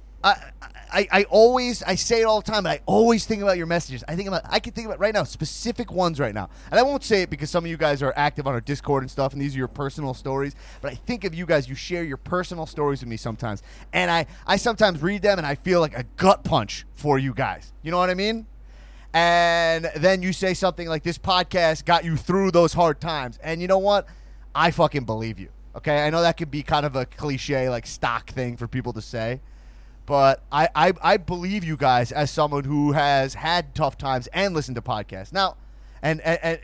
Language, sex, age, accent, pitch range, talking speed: English, male, 30-49, American, 130-185 Hz, 240 wpm